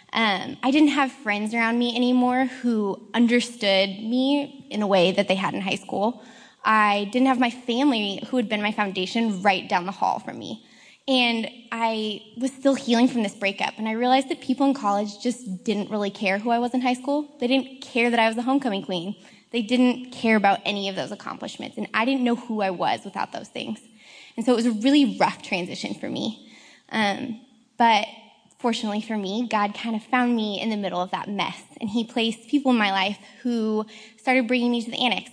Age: 20-39